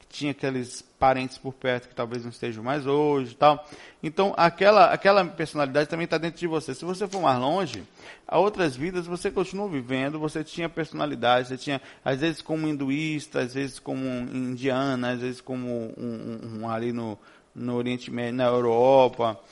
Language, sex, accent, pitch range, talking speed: Portuguese, male, Brazilian, 115-145 Hz, 180 wpm